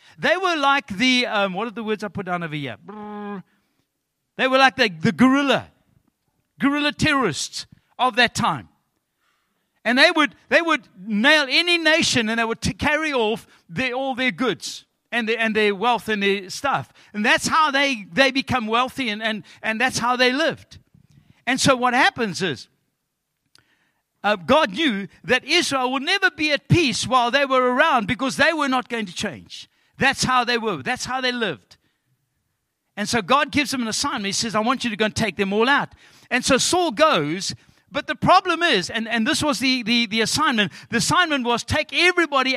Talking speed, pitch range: 195 wpm, 205-270 Hz